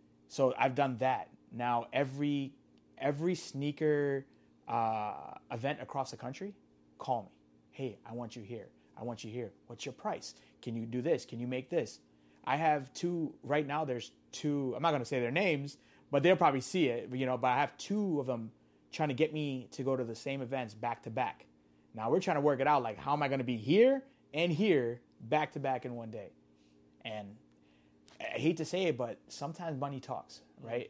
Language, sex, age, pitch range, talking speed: English, male, 30-49, 110-145 Hz, 210 wpm